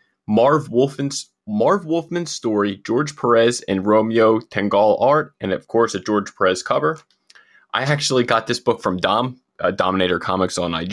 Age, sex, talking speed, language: 20-39, male, 165 wpm, English